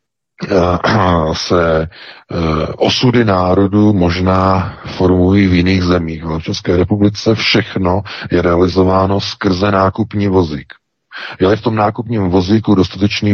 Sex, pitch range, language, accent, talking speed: male, 90-115 Hz, Czech, native, 110 wpm